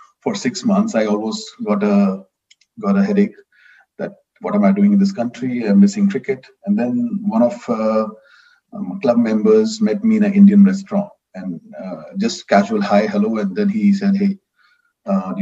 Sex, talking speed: male, 185 wpm